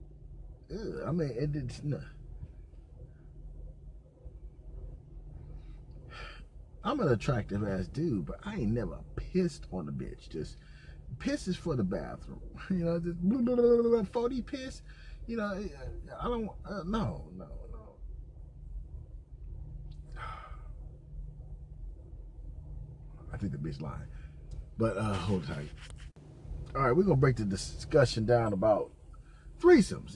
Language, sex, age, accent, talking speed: English, male, 30-49, American, 110 wpm